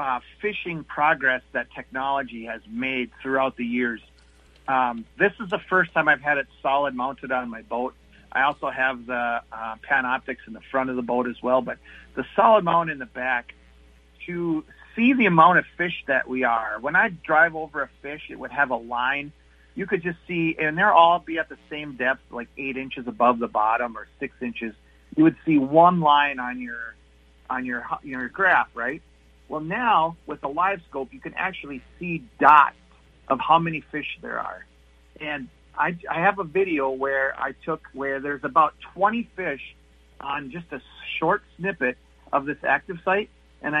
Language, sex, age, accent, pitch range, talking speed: English, male, 40-59, American, 120-170 Hz, 190 wpm